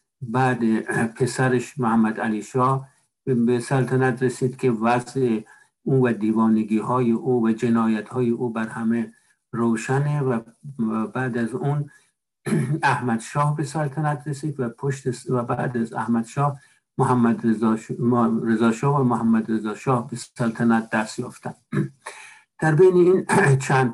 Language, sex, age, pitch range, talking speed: Persian, male, 60-79, 115-135 Hz, 130 wpm